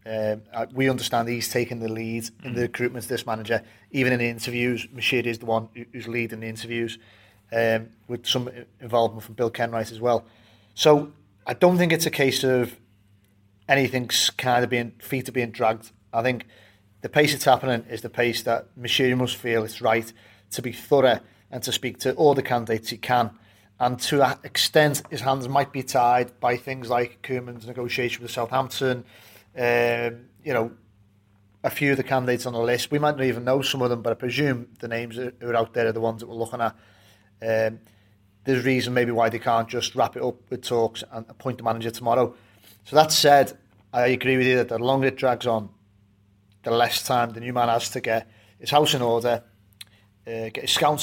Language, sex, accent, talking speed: English, male, British, 210 wpm